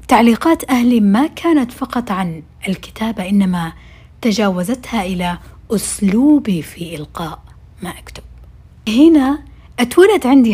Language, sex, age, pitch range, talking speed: Arabic, female, 60-79, 190-235 Hz, 100 wpm